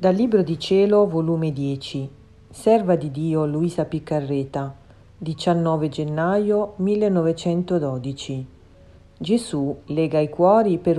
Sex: female